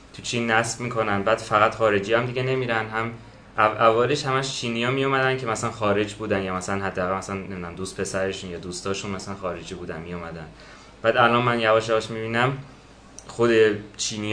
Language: Persian